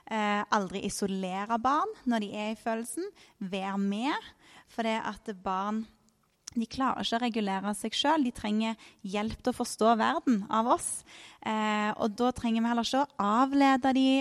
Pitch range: 195-235 Hz